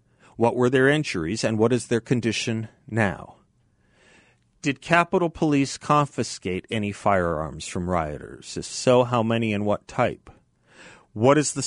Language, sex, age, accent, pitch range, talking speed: English, male, 40-59, American, 110-140 Hz, 145 wpm